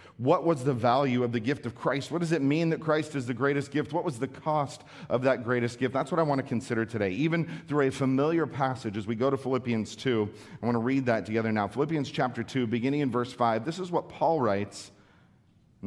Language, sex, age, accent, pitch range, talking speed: English, male, 40-59, American, 110-140 Hz, 245 wpm